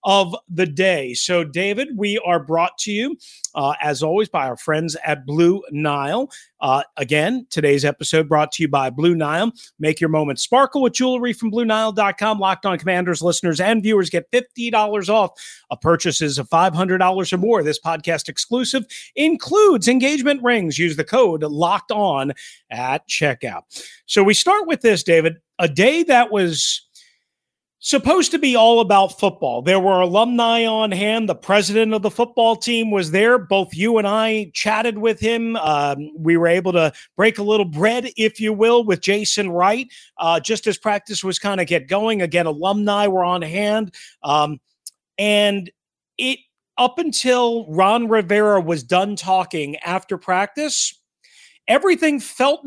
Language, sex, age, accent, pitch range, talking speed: English, male, 40-59, American, 170-230 Hz, 165 wpm